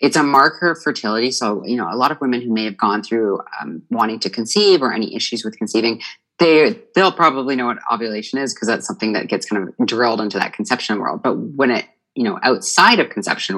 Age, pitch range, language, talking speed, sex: 20-39, 115-150 Hz, English, 240 wpm, female